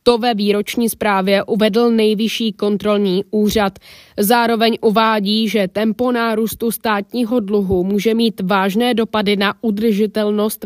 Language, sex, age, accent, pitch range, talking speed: Czech, female, 20-39, native, 200-230 Hz, 120 wpm